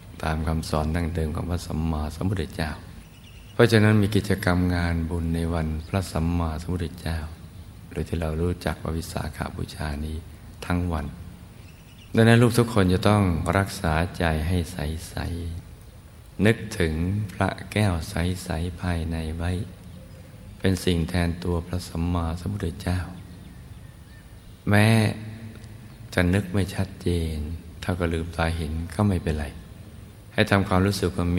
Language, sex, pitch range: Thai, male, 85-100 Hz